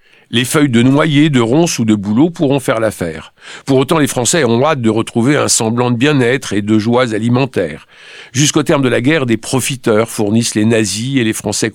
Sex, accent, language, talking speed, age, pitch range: male, French, French, 210 wpm, 50-69, 100-135 Hz